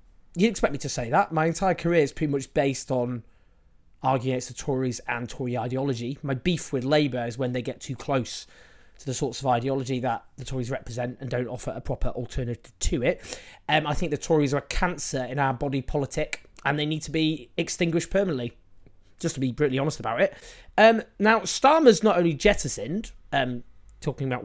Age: 20-39